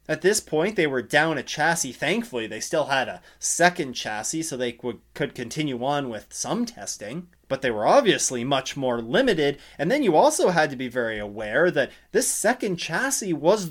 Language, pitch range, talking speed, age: English, 135-210 Hz, 195 wpm, 30-49